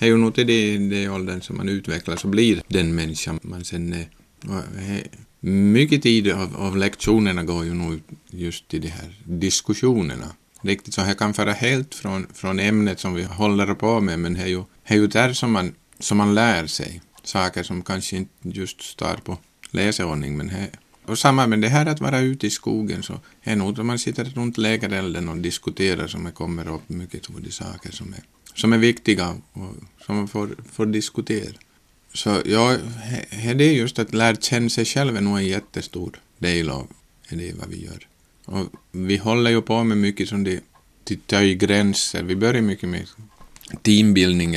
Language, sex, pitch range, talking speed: Swedish, male, 85-110 Hz, 185 wpm